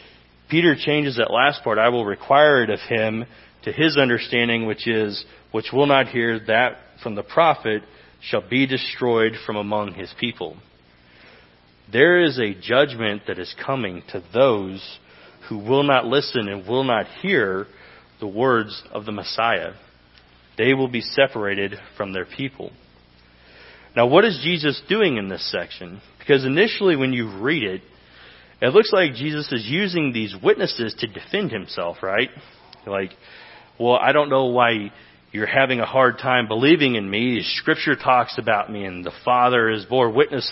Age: 40-59